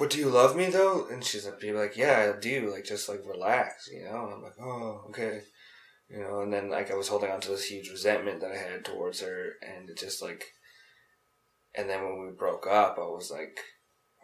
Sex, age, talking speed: male, 20-39, 230 wpm